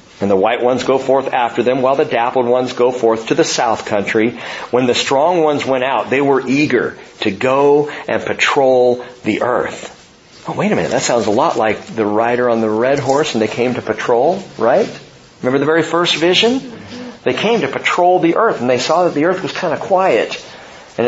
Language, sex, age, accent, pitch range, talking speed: English, male, 50-69, American, 120-165 Hz, 215 wpm